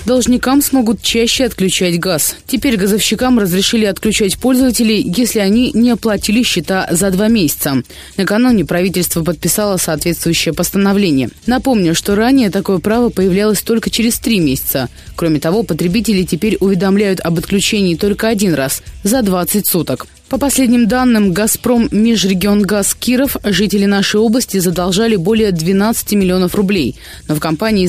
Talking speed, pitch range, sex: 135 wpm, 180-230 Hz, female